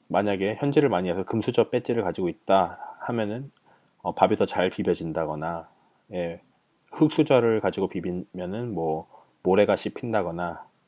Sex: male